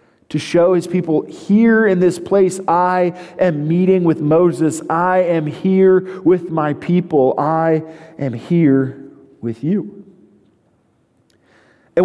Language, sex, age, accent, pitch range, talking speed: English, male, 40-59, American, 135-190 Hz, 125 wpm